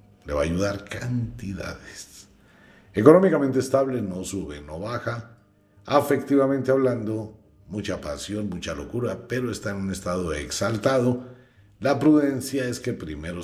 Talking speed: 125 wpm